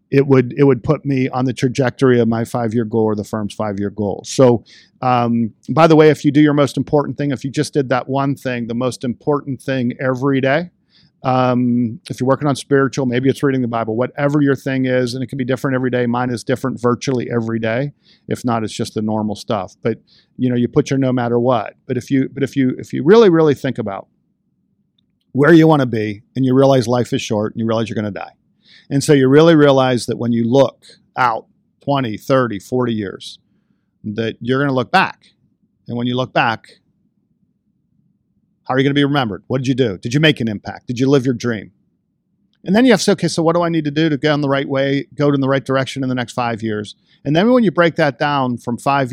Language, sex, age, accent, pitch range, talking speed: English, male, 50-69, American, 120-140 Hz, 250 wpm